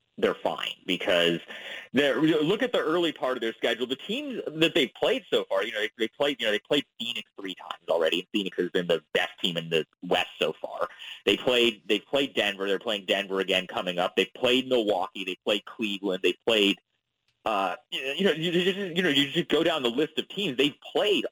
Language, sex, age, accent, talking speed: English, male, 30-49, American, 230 wpm